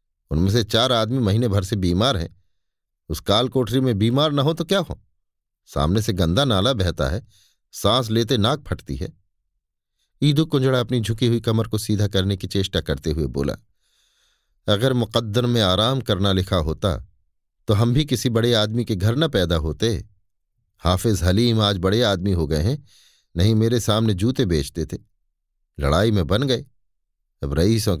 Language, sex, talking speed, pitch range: Hindi, male, 175 wpm, 90-120 Hz